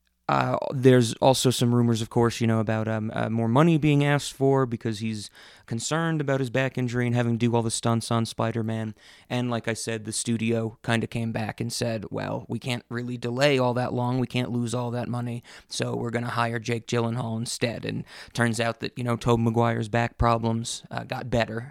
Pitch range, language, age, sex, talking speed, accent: 115-125 Hz, English, 20-39, male, 220 wpm, American